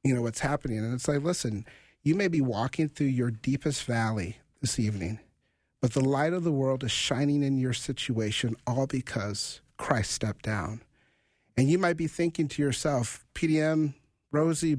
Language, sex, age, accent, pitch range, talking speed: English, male, 50-69, American, 120-160 Hz, 175 wpm